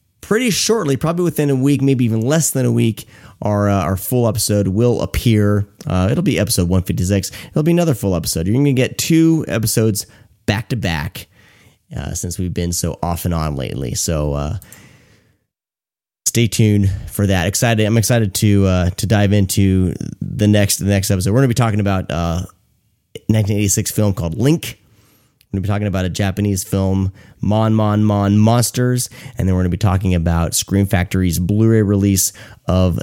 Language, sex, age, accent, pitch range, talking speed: English, male, 30-49, American, 95-120 Hz, 185 wpm